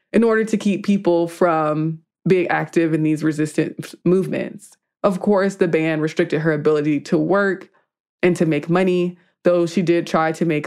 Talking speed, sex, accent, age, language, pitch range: 175 wpm, female, American, 20-39, English, 155-180 Hz